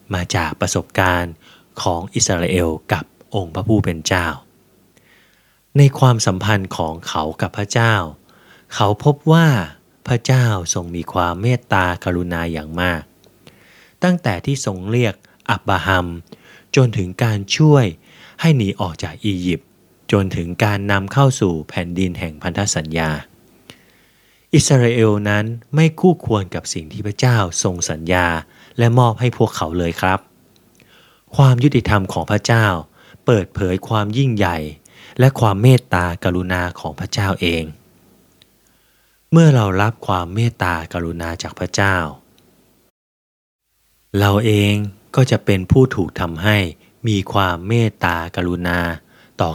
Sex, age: male, 20-39